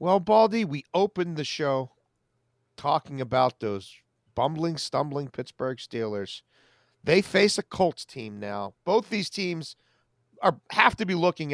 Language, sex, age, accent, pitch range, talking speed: English, male, 40-59, American, 130-190 Hz, 140 wpm